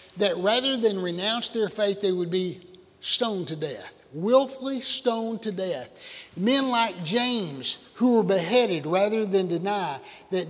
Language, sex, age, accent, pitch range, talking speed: English, male, 60-79, American, 180-225 Hz, 150 wpm